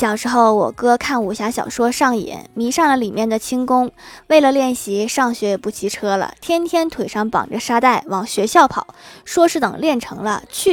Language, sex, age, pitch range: Chinese, female, 20-39, 210-275 Hz